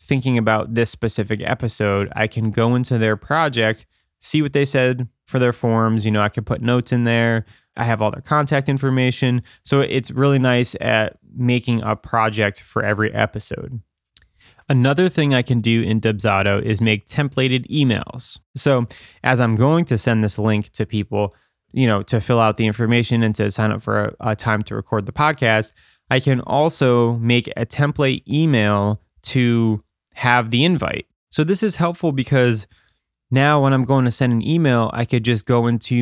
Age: 20-39